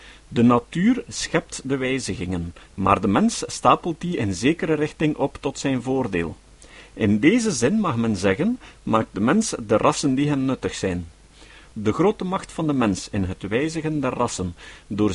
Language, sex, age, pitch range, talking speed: Dutch, male, 50-69, 105-175 Hz, 175 wpm